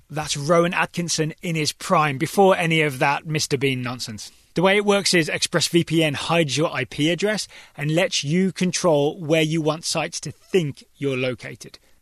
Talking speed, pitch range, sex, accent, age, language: 175 wpm, 145-175 Hz, male, British, 20-39, English